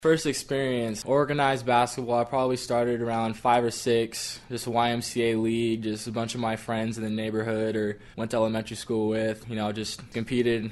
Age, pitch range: 20-39, 105-115 Hz